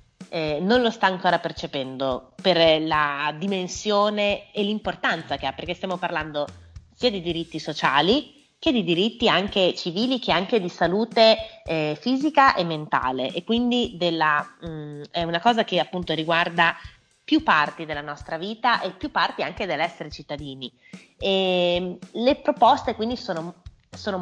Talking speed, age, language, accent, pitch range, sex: 150 wpm, 30-49, Italian, native, 155-195 Hz, female